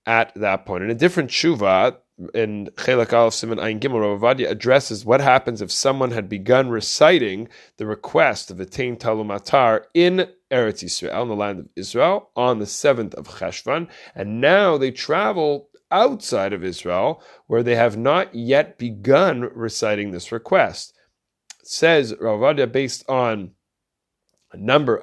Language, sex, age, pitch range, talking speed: English, male, 30-49, 100-125 Hz, 145 wpm